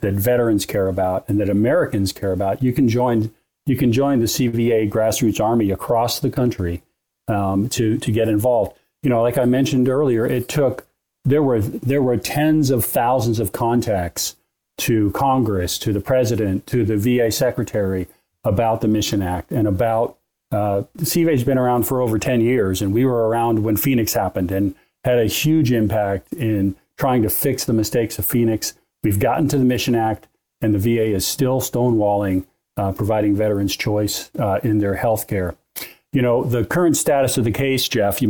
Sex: male